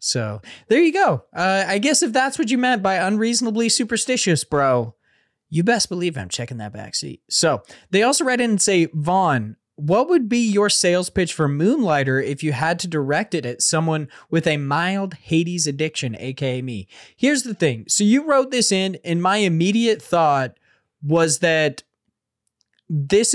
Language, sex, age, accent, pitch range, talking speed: English, male, 20-39, American, 145-200 Hz, 175 wpm